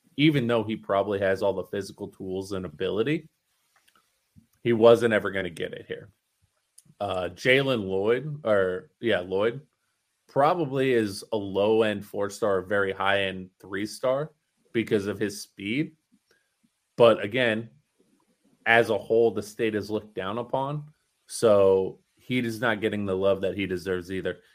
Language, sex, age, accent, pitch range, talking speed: English, male, 20-39, American, 95-115 Hz, 150 wpm